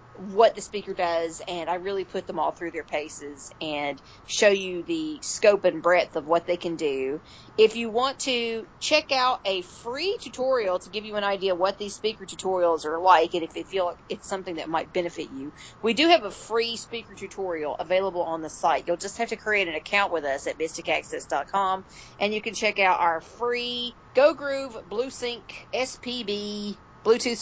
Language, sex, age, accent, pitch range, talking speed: English, female, 40-59, American, 170-215 Hz, 195 wpm